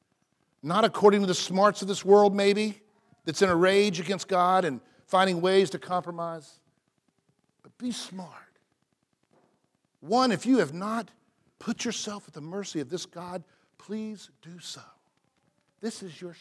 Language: English